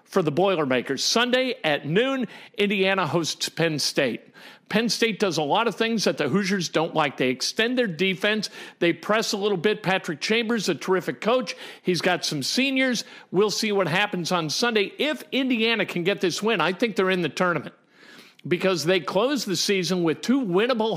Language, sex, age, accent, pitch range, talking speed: English, male, 50-69, American, 175-220 Hz, 190 wpm